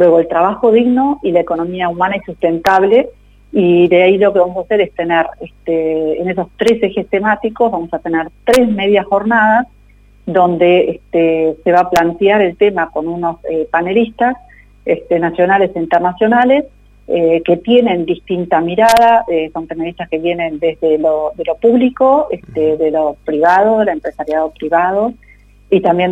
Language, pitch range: Spanish, 165-205 Hz